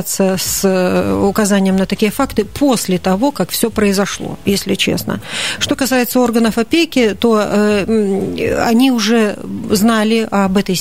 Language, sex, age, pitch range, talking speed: Russian, female, 40-59, 195-240 Hz, 130 wpm